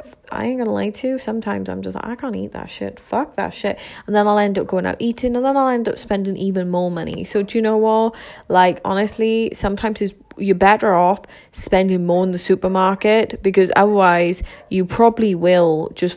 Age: 20-39